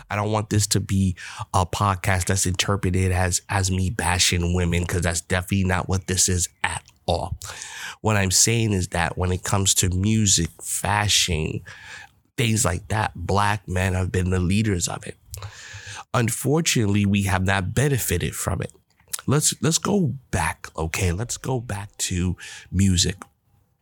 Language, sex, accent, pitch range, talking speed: English, male, American, 90-110 Hz, 160 wpm